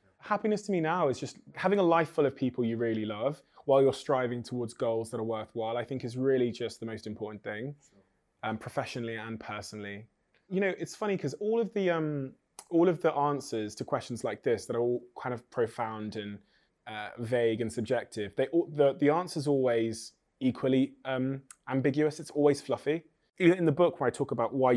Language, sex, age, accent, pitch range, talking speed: English, male, 20-39, British, 115-150 Hz, 200 wpm